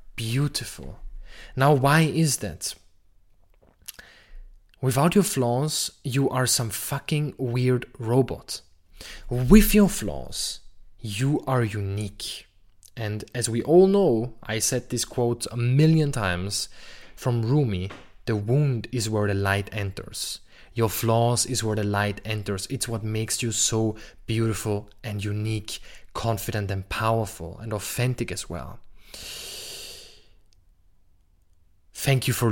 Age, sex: 20-39, male